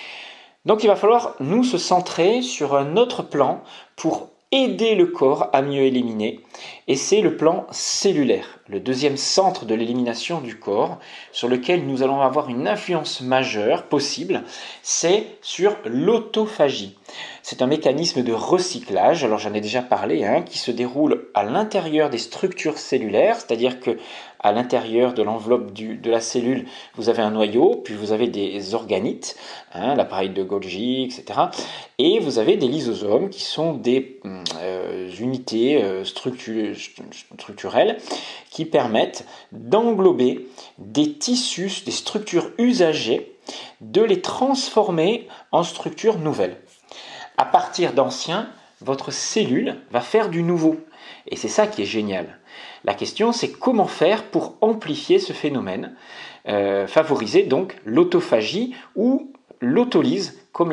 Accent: French